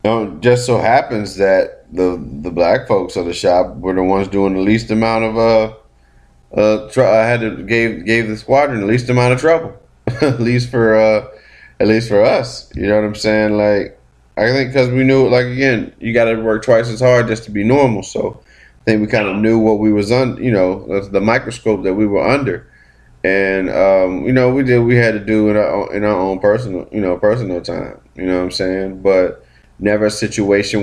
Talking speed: 230 wpm